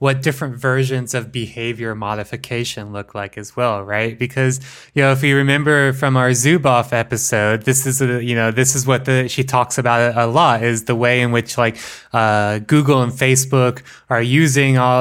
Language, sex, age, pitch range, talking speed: English, male, 20-39, 115-140 Hz, 190 wpm